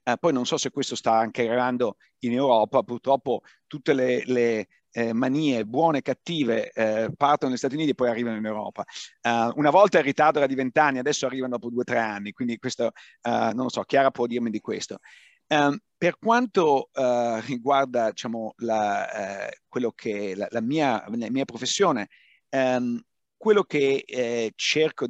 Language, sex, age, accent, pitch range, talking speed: Italian, male, 50-69, native, 120-150 Hz, 165 wpm